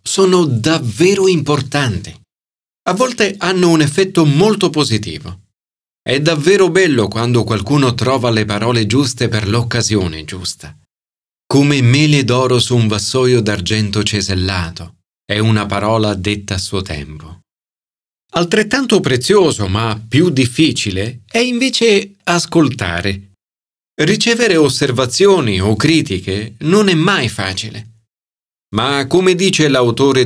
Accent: native